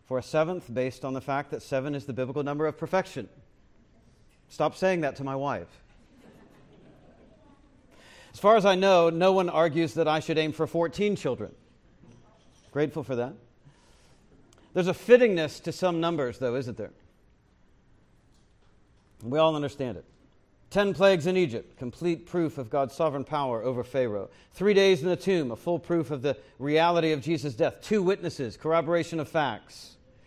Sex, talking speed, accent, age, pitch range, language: male, 165 wpm, American, 40-59, 135-175 Hz, English